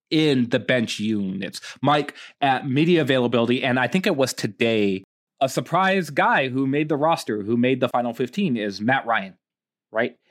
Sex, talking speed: male, 175 wpm